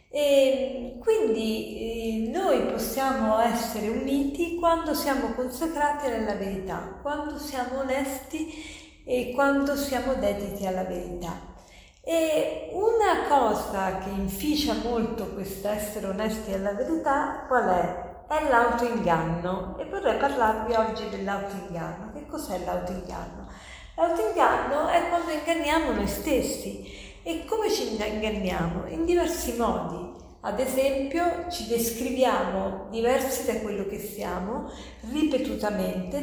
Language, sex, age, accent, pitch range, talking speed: Italian, female, 50-69, native, 215-290 Hz, 110 wpm